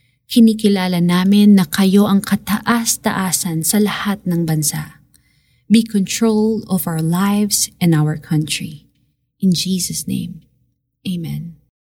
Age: 20-39